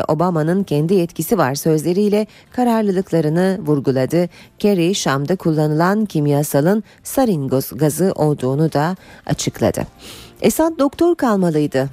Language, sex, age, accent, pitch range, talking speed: Turkish, female, 40-59, native, 150-195 Hz, 95 wpm